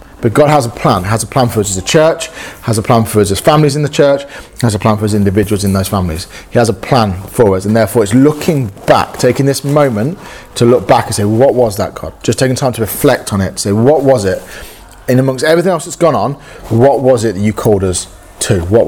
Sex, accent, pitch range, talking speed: male, British, 105-135 Hz, 265 wpm